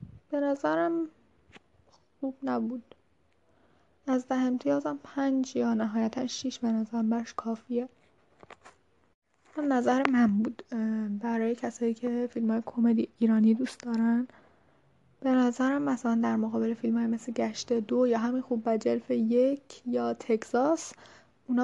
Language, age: Persian, 10-29